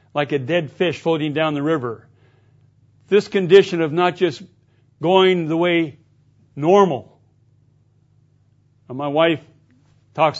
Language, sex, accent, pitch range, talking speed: English, male, American, 125-170 Hz, 120 wpm